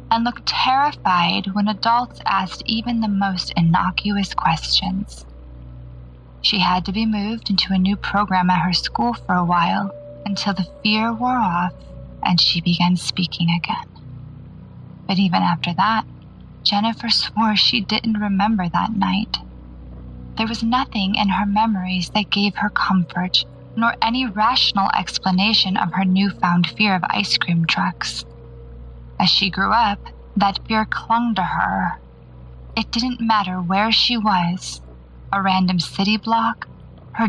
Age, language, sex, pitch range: 20-39, English, female, 170-215 Hz